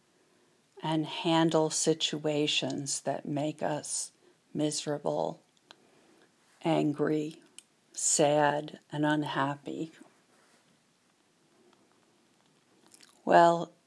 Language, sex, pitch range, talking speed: English, female, 150-165 Hz, 50 wpm